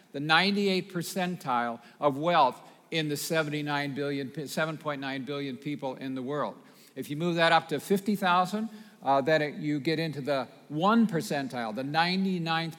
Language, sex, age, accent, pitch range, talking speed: English, male, 50-69, American, 140-180 Hz, 155 wpm